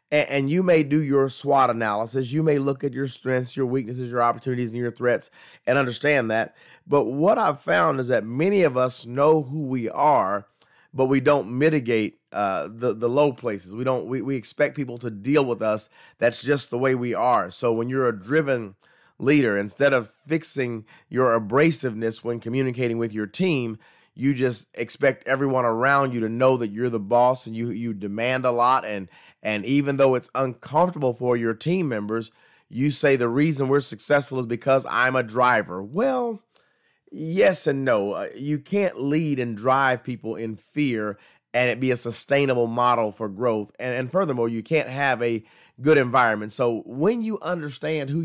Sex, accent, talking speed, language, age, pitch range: male, American, 185 wpm, English, 30-49, 120-145 Hz